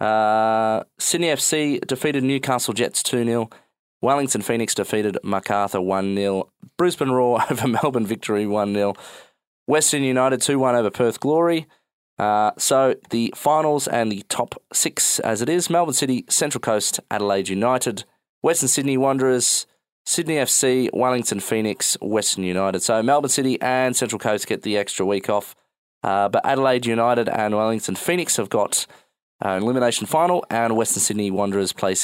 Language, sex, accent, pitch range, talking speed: English, male, Australian, 100-135 Hz, 150 wpm